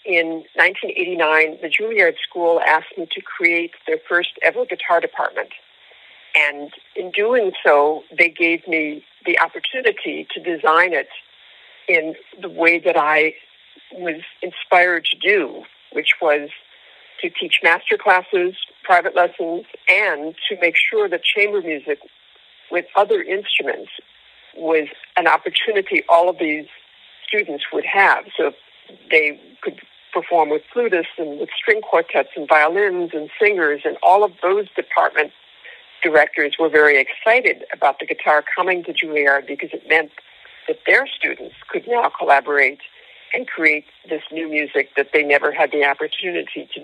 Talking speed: 145 wpm